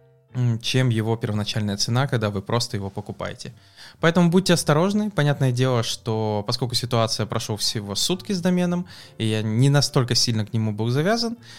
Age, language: 20-39, English